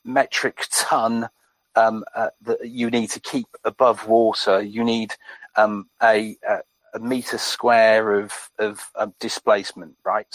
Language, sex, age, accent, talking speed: English, male, 40-59, British, 140 wpm